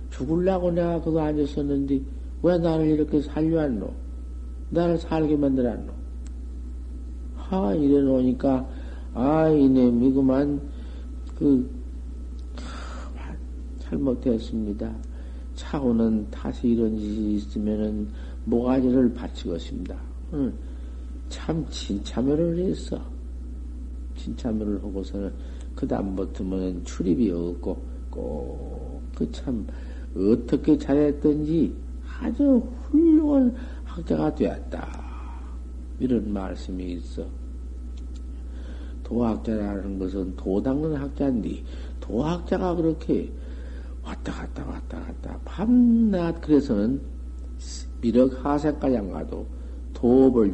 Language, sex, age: Korean, male, 50-69